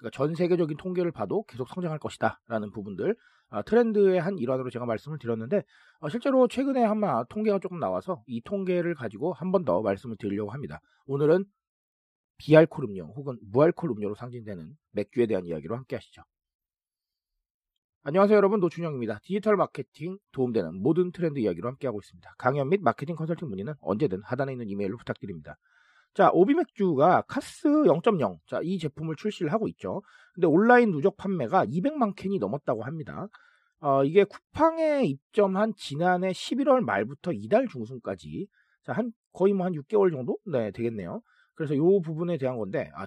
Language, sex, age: Korean, male, 40-59